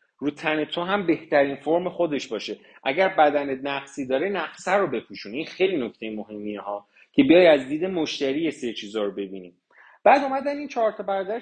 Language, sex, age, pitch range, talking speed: Persian, male, 30-49, 140-200 Hz, 180 wpm